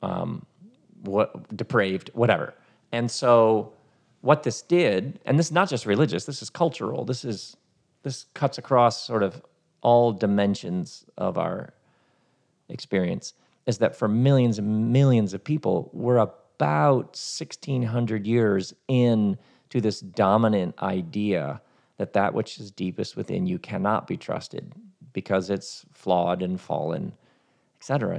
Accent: American